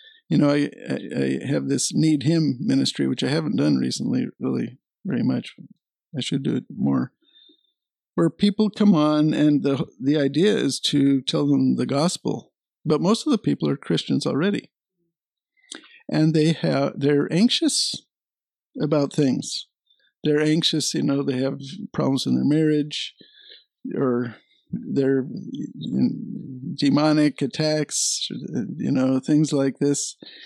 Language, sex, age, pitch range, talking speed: English, male, 50-69, 140-215 Hz, 140 wpm